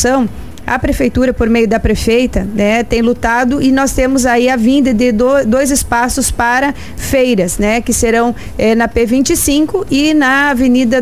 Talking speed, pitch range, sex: 160 wpm, 235-275 Hz, female